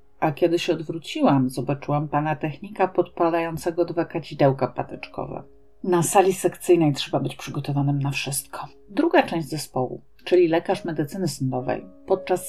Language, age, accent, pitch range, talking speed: Polish, 40-59, native, 140-180 Hz, 130 wpm